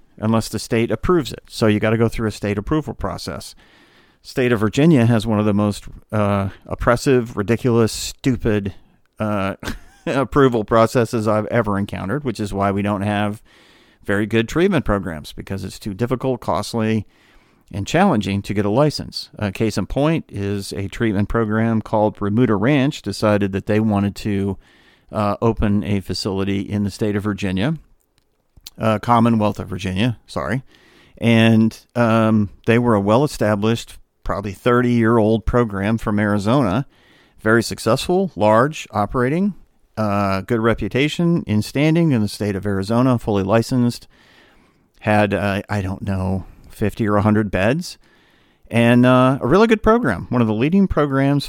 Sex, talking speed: male, 155 wpm